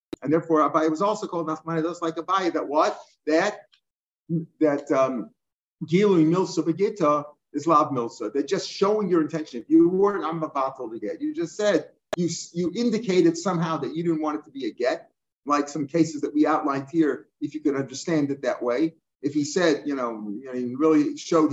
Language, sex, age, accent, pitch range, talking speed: English, male, 50-69, American, 145-180 Hz, 205 wpm